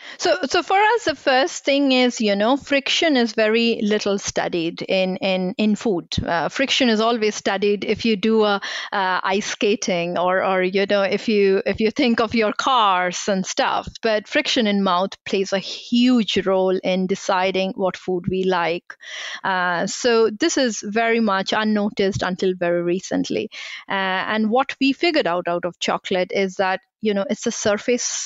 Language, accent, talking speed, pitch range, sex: English, Indian, 180 wpm, 195-235 Hz, female